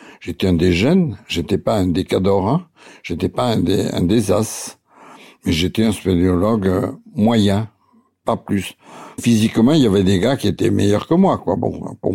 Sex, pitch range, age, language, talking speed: male, 105-140 Hz, 60-79, French, 190 wpm